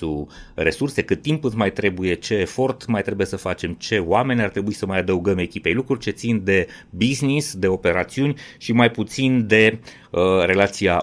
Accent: native